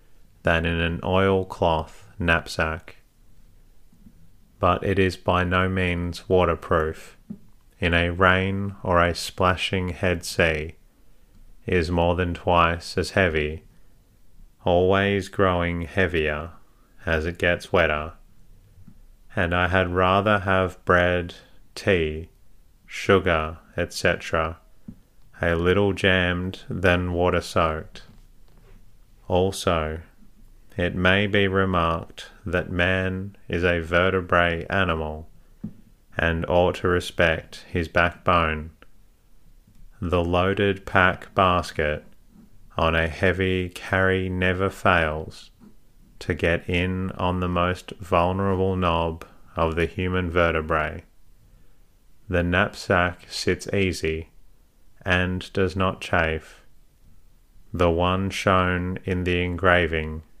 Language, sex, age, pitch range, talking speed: English, male, 30-49, 85-95 Hz, 100 wpm